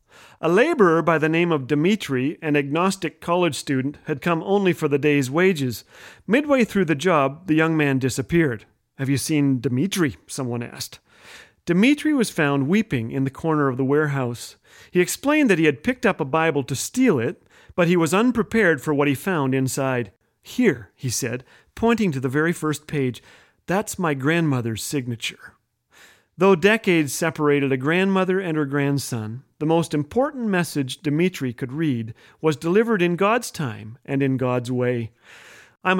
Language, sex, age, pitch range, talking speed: English, male, 40-59, 135-180 Hz, 170 wpm